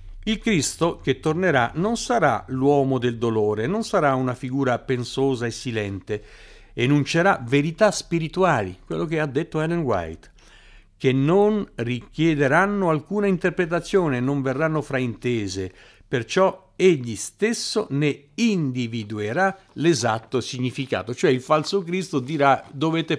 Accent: native